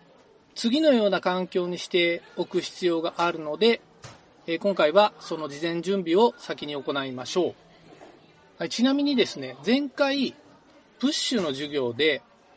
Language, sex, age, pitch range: Japanese, male, 40-59, 170-255 Hz